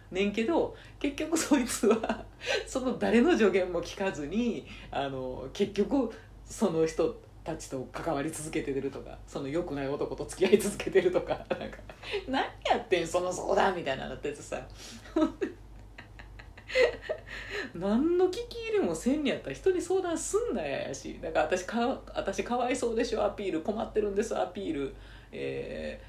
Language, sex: Japanese, female